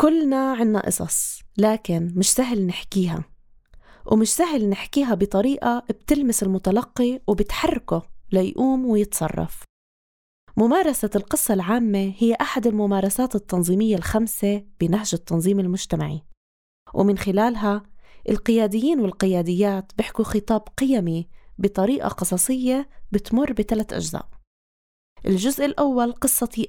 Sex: female